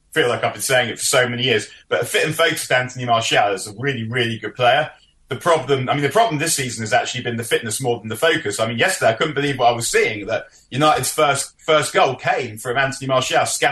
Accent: British